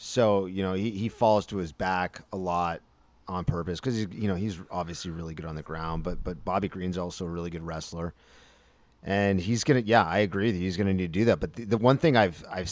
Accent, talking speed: American, 260 wpm